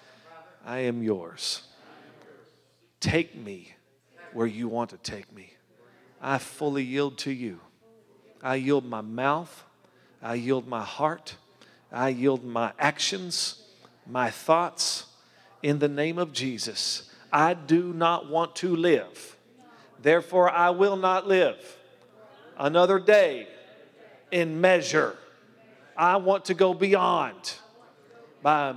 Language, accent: English, American